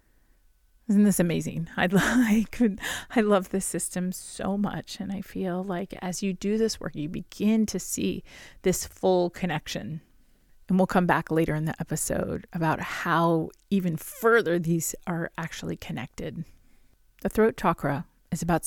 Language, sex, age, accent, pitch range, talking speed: English, female, 30-49, American, 165-215 Hz, 160 wpm